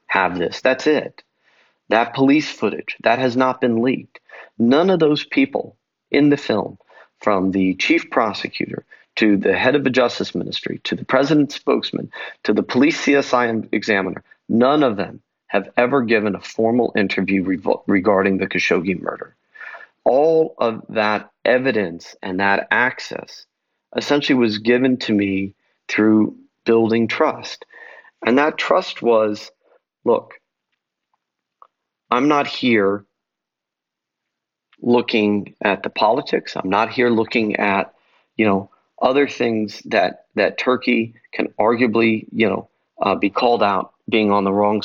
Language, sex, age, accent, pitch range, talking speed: English, male, 40-59, American, 100-125 Hz, 140 wpm